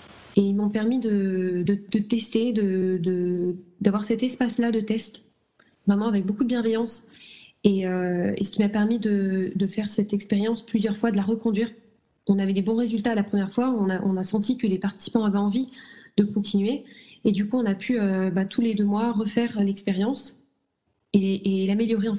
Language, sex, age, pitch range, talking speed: French, female, 20-39, 195-230 Hz, 205 wpm